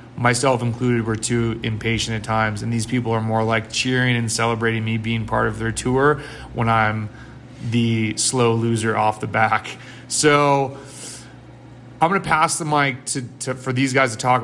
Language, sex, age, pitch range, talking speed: English, male, 30-49, 115-130 Hz, 180 wpm